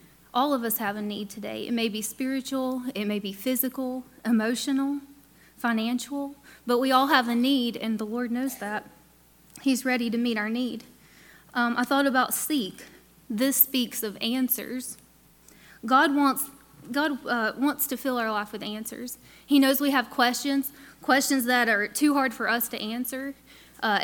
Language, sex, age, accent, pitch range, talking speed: English, female, 20-39, American, 220-260 Hz, 170 wpm